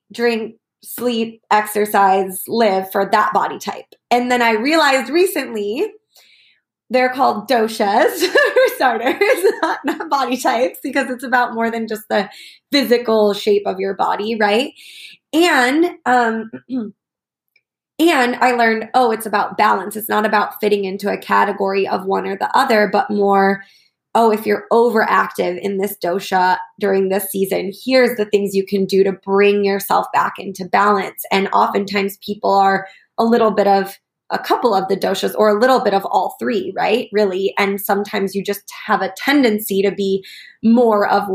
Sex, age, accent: female, 20-39, American